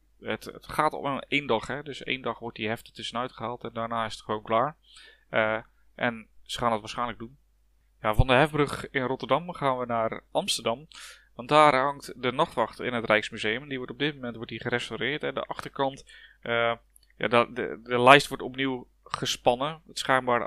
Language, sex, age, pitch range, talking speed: Dutch, male, 20-39, 115-135 Hz, 180 wpm